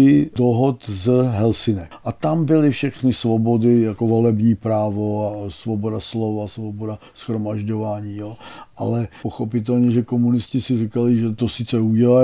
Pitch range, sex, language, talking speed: 110-120 Hz, male, Czech, 125 wpm